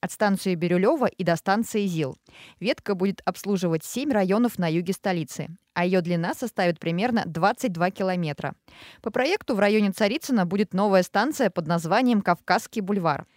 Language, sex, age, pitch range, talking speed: Russian, female, 20-39, 175-225 Hz, 155 wpm